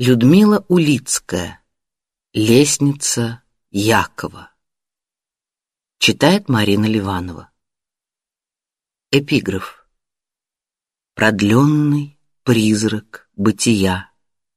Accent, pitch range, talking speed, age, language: native, 100-145 Hz, 45 wpm, 40-59, Russian